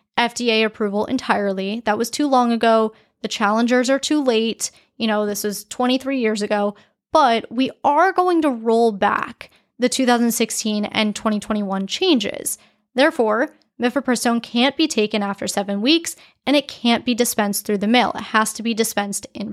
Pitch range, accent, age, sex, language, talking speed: 210-255 Hz, American, 10-29, female, English, 165 wpm